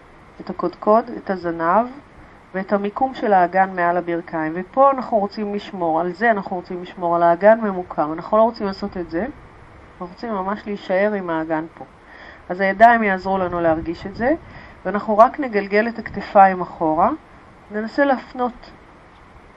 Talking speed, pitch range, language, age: 155 wpm, 170-220 Hz, Hebrew, 40-59